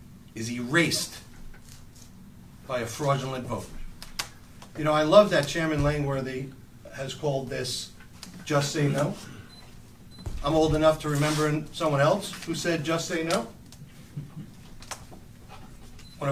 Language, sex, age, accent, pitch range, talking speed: English, male, 50-69, American, 125-165 Hz, 120 wpm